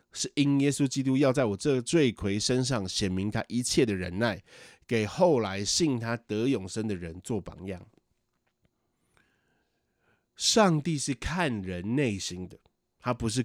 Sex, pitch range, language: male, 105-155 Hz, Chinese